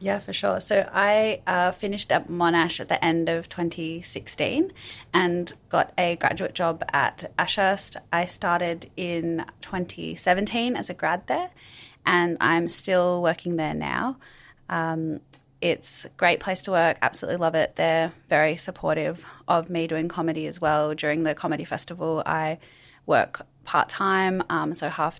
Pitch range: 155-180 Hz